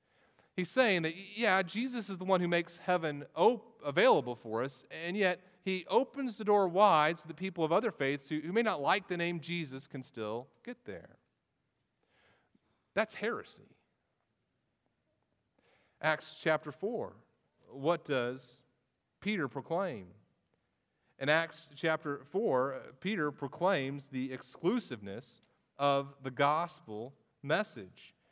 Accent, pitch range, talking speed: American, 135-190 Hz, 125 wpm